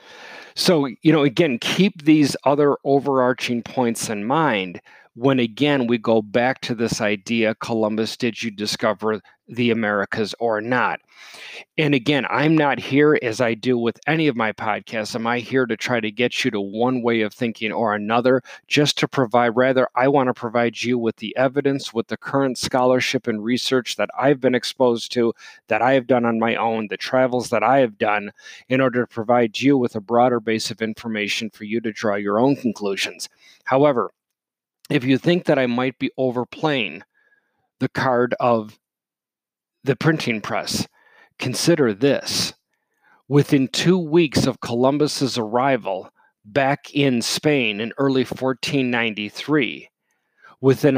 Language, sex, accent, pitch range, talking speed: English, male, American, 115-140 Hz, 165 wpm